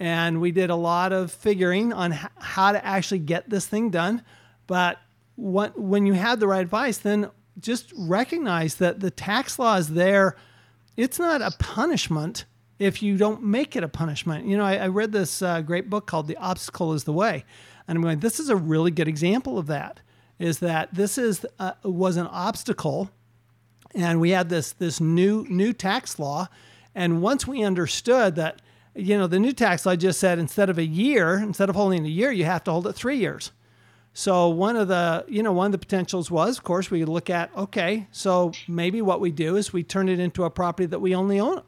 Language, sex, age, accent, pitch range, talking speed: English, male, 50-69, American, 165-205 Hz, 210 wpm